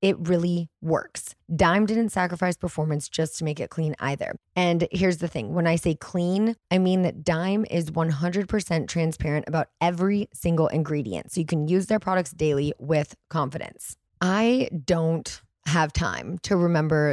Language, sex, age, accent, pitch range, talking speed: English, female, 20-39, American, 160-185 Hz, 165 wpm